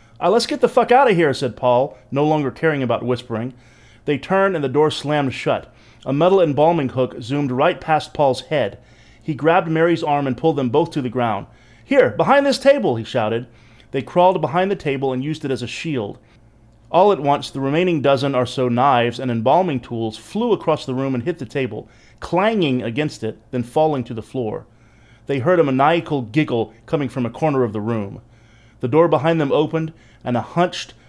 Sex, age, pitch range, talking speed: male, 30-49, 120-155 Hz, 205 wpm